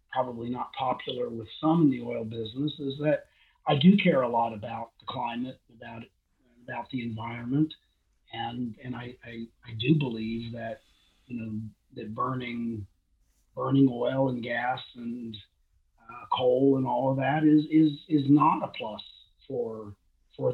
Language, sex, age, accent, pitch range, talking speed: English, male, 40-59, American, 115-150 Hz, 160 wpm